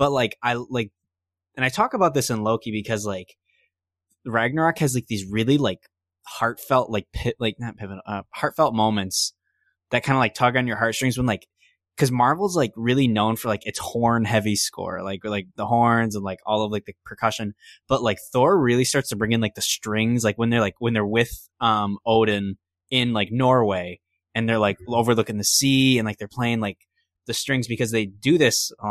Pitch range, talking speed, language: 100-120 Hz, 210 wpm, English